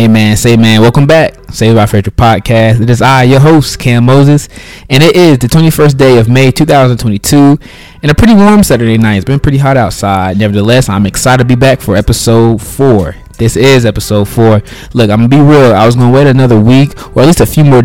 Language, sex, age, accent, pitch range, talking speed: English, male, 20-39, American, 110-130 Hz, 230 wpm